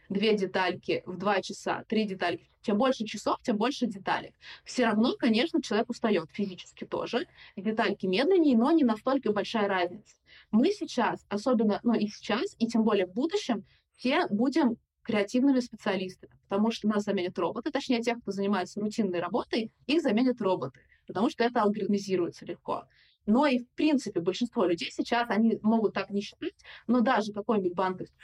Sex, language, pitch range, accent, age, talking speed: female, Russian, 200-250 Hz, native, 20-39, 165 wpm